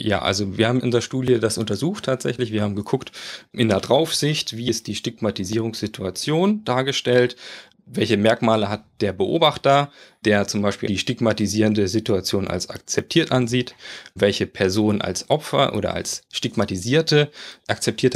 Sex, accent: male, German